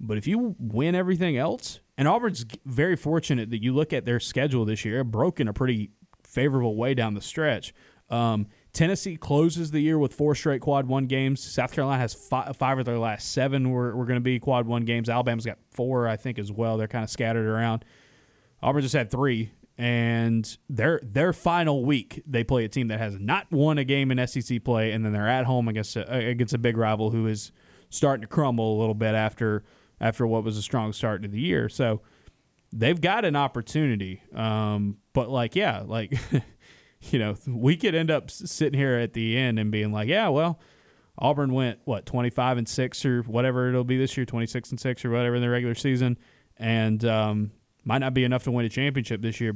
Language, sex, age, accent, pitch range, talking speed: English, male, 20-39, American, 110-135 Hz, 210 wpm